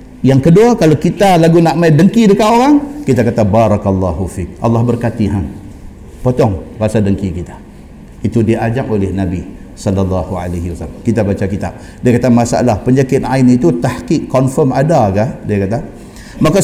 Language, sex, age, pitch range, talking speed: Malay, male, 50-69, 110-155 Hz, 160 wpm